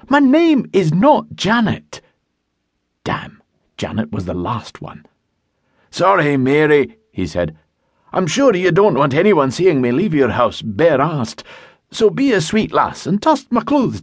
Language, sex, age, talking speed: English, male, 50-69, 155 wpm